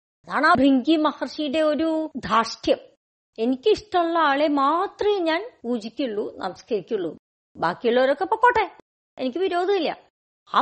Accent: native